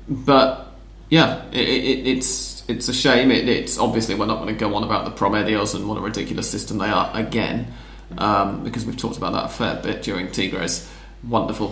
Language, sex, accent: English, male, British